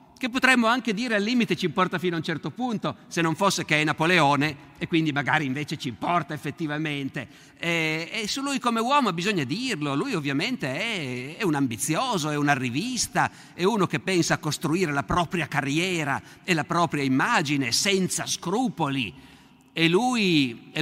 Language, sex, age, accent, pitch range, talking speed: Italian, male, 50-69, native, 140-190 Hz, 175 wpm